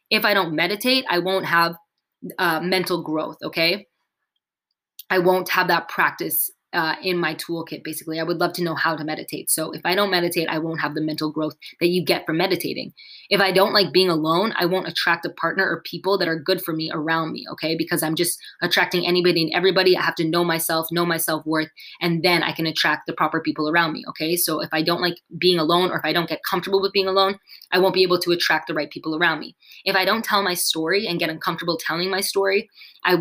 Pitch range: 165-190 Hz